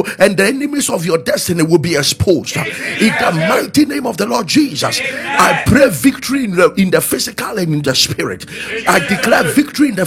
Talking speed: 205 wpm